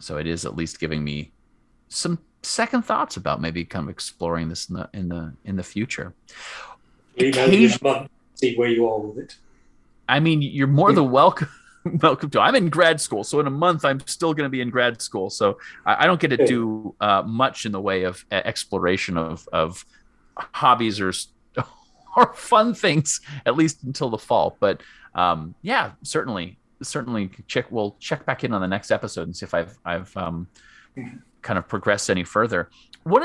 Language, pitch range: English, 100-170 Hz